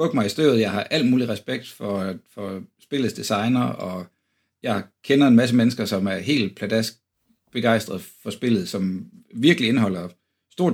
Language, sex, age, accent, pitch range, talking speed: Danish, male, 60-79, native, 100-130 Hz, 155 wpm